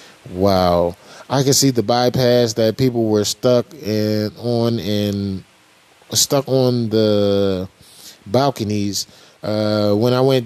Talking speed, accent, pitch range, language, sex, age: 115 wpm, American, 110-125 Hz, English, male, 20-39